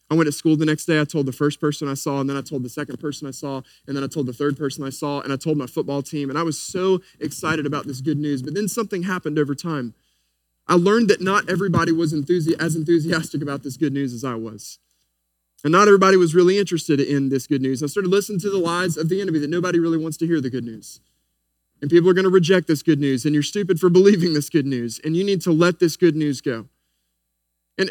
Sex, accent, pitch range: male, American, 145-215 Hz